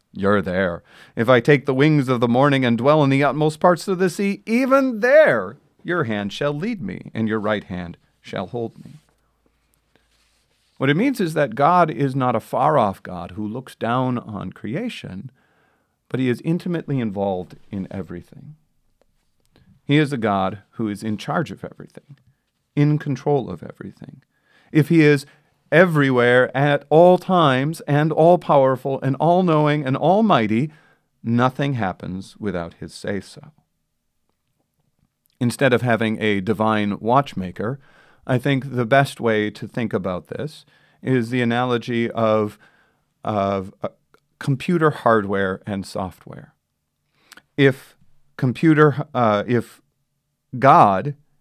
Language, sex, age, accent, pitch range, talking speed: English, male, 40-59, American, 110-150 Hz, 135 wpm